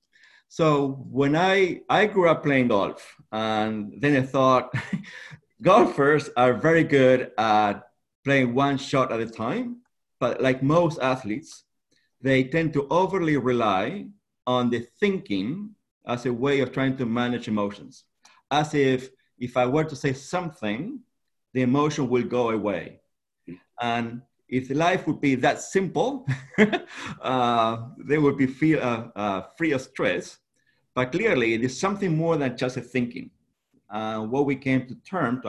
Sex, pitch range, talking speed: male, 115-150 Hz, 150 wpm